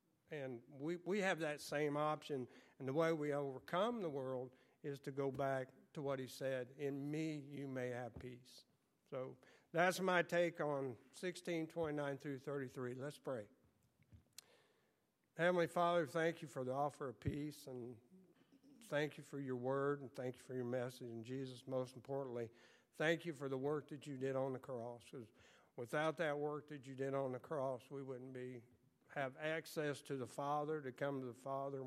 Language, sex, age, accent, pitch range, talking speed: English, male, 60-79, American, 130-150 Hz, 185 wpm